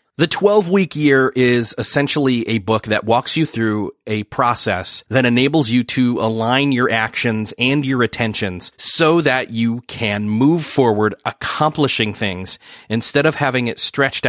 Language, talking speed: English, 150 wpm